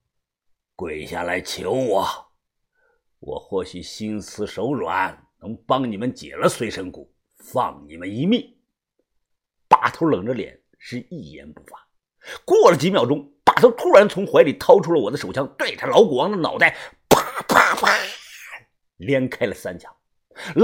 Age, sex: 50-69, male